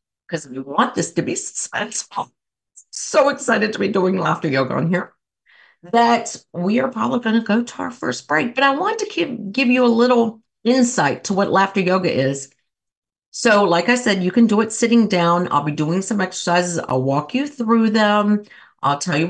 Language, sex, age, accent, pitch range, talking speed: English, female, 50-69, American, 160-230 Hz, 200 wpm